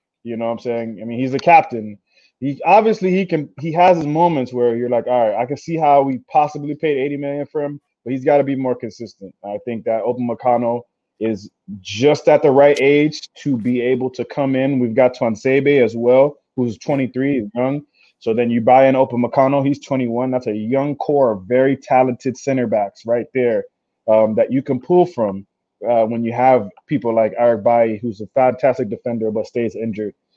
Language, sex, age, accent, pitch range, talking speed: English, male, 20-39, American, 115-135 Hz, 205 wpm